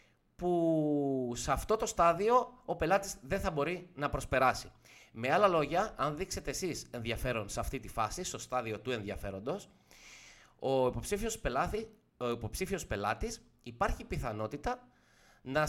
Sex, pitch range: male, 120-185 Hz